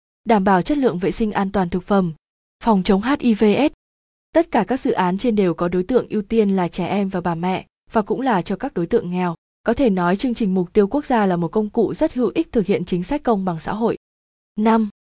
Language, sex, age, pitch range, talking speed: Vietnamese, female, 20-39, 190-235 Hz, 255 wpm